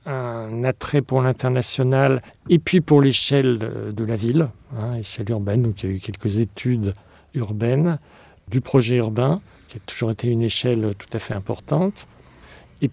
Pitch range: 105-135 Hz